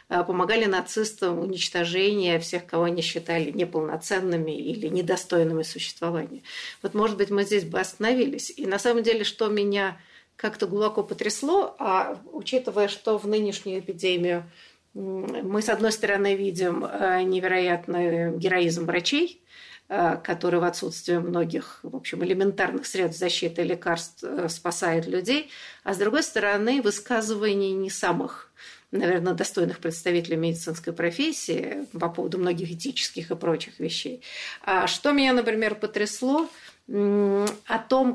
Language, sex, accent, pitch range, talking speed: Russian, female, native, 175-220 Hz, 125 wpm